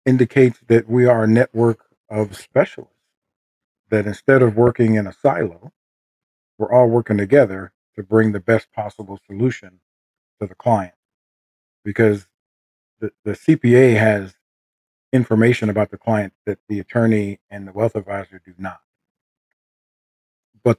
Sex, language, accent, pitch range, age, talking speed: male, English, American, 100-120 Hz, 40-59, 135 wpm